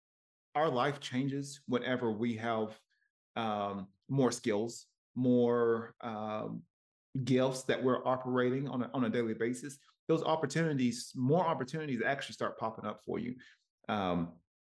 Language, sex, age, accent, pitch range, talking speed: English, male, 30-49, American, 110-130 Hz, 130 wpm